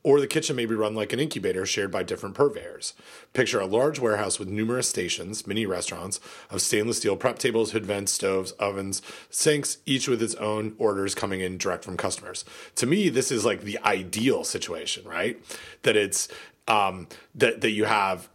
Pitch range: 95-120 Hz